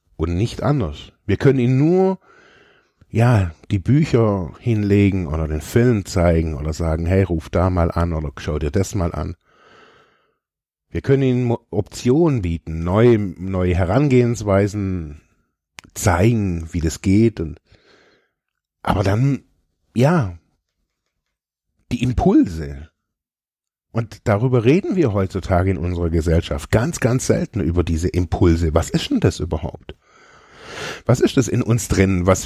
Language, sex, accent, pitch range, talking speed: German, male, German, 85-120 Hz, 135 wpm